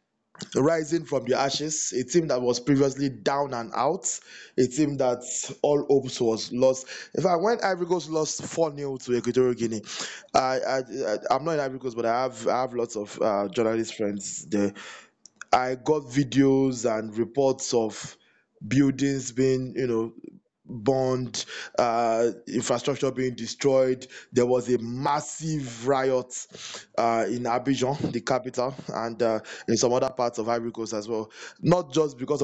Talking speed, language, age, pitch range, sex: 155 wpm, English, 20-39, 120-145 Hz, male